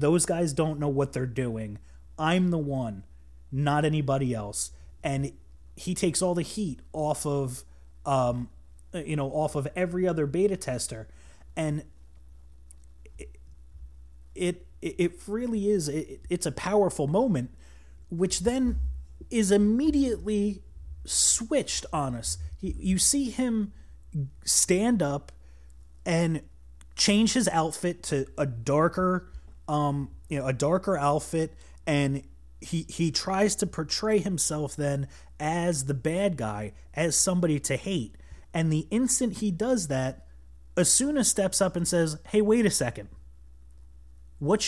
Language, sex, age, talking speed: English, male, 30-49, 130 wpm